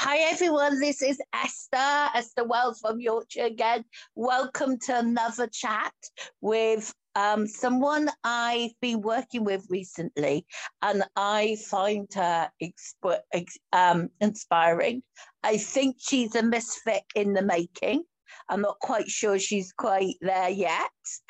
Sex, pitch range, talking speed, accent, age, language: female, 185-245 Hz, 125 wpm, British, 50-69, English